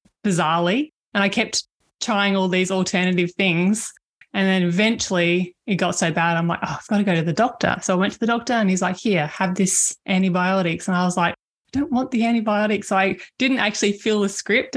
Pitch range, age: 185-235 Hz, 20-39